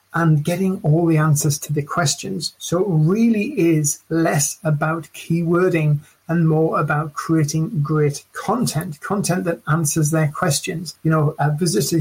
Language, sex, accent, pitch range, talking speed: English, male, British, 155-175 Hz, 150 wpm